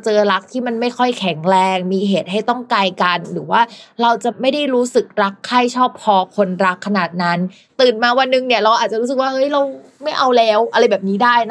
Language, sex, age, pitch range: Thai, female, 20-39, 185-245 Hz